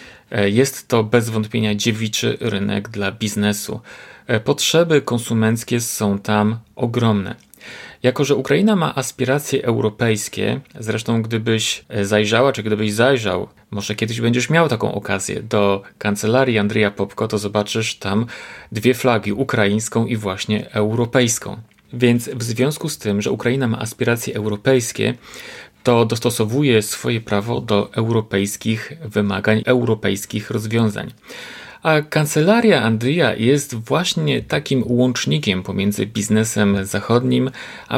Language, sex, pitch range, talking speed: Polish, male, 105-125 Hz, 115 wpm